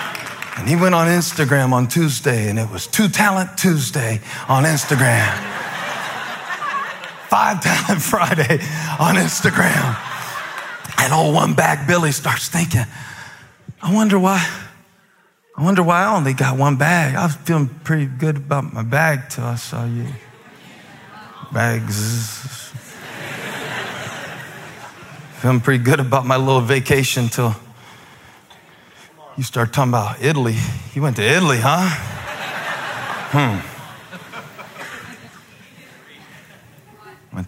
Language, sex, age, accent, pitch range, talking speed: English, male, 40-59, American, 125-175 Hz, 110 wpm